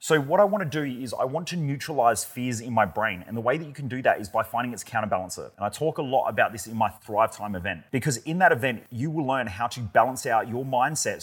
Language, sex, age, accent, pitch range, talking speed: English, male, 30-49, Australian, 105-130 Hz, 285 wpm